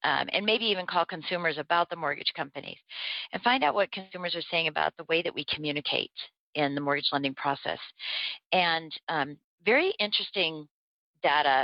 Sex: female